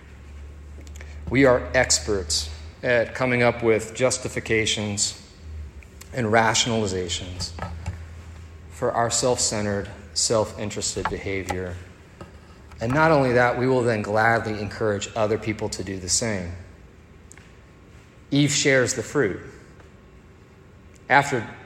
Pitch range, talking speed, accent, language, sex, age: 95-125 Hz, 95 wpm, American, English, male, 30-49